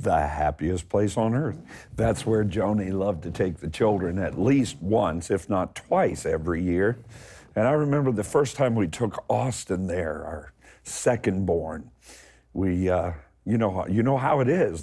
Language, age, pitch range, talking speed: English, 50-69, 80-115 Hz, 165 wpm